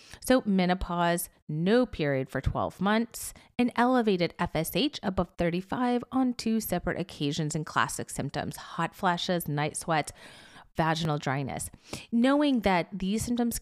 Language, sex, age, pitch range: English, female, 30-49, 165-225 Hz